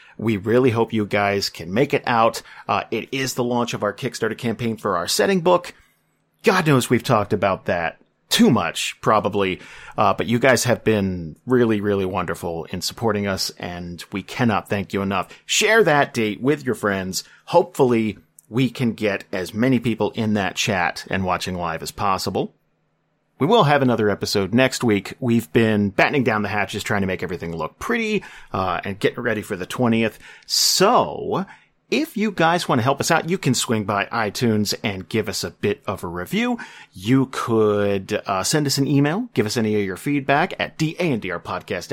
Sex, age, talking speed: male, 40-59, 190 wpm